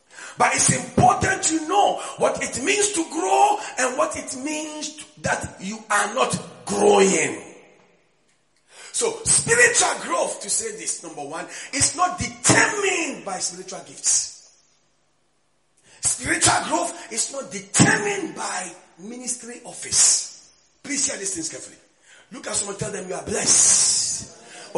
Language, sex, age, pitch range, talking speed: English, male, 40-59, 225-370 Hz, 130 wpm